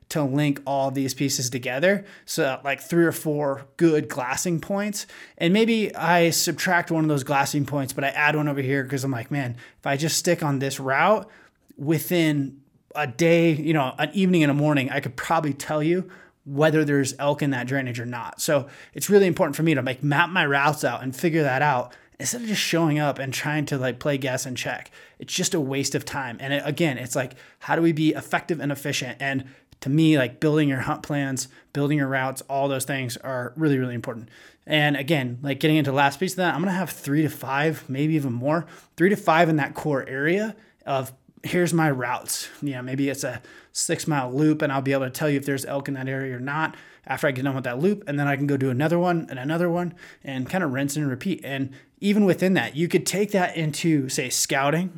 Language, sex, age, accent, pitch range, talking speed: English, male, 20-39, American, 135-165 Hz, 235 wpm